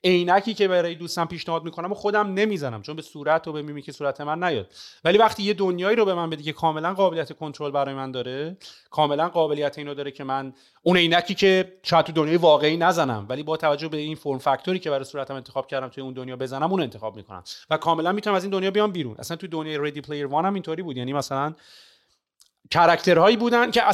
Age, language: 30-49, Persian